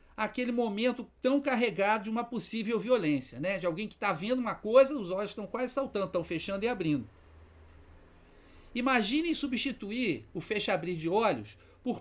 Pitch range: 175-245 Hz